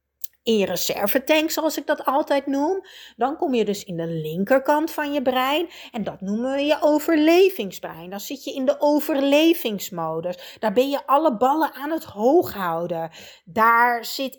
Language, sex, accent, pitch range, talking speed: Dutch, female, Dutch, 200-305 Hz, 170 wpm